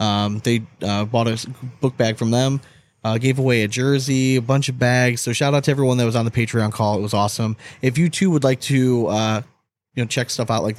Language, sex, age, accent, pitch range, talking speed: English, male, 20-39, American, 115-135 Hz, 250 wpm